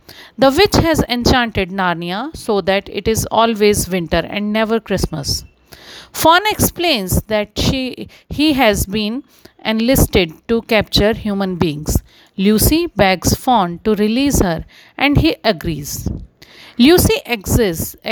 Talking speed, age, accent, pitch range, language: 125 wpm, 40-59, Indian, 190-245 Hz, English